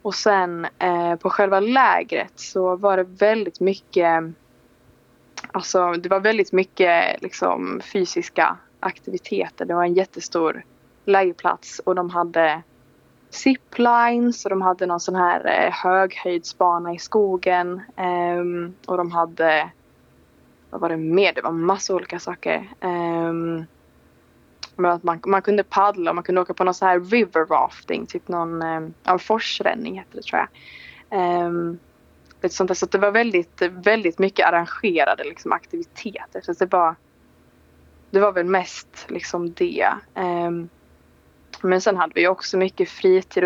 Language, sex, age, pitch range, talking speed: Swedish, female, 20-39, 170-195 Hz, 145 wpm